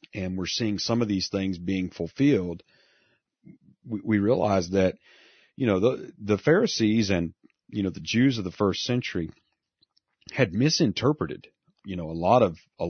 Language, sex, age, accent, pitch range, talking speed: English, male, 40-59, American, 90-110 Hz, 165 wpm